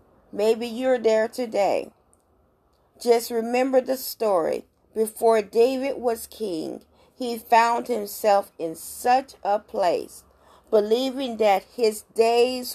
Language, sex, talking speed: English, female, 110 wpm